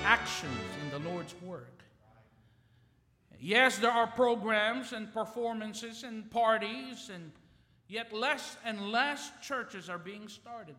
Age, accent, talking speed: 50-69, American, 120 wpm